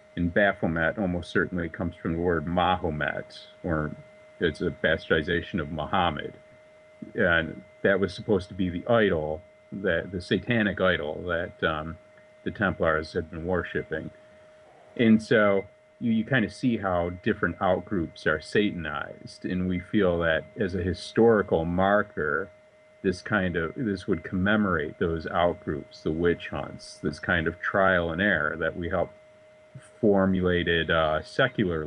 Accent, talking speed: American, 145 wpm